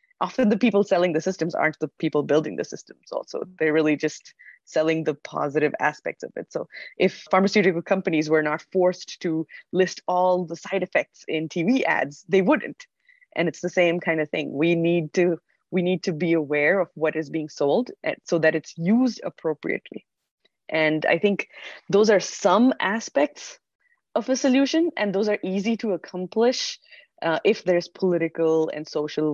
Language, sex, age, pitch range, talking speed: English, female, 20-39, 155-195 Hz, 175 wpm